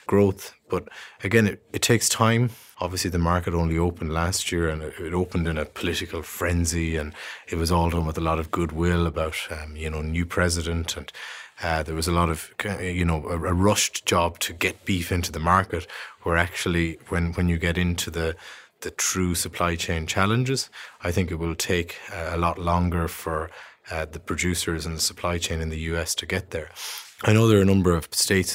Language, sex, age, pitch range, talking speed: English, male, 30-49, 80-90 Hz, 210 wpm